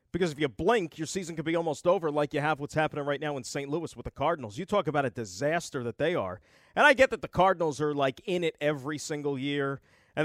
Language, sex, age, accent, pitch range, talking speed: English, male, 40-59, American, 145-185 Hz, 265 wpm